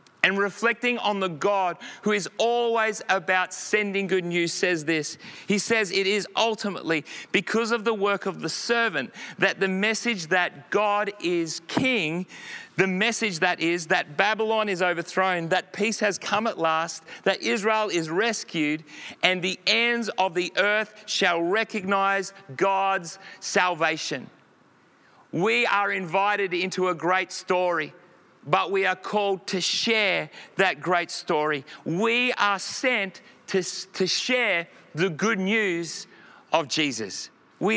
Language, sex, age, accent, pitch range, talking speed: English, male, 40-59, Australian, 180-210 Hz, 140 wpm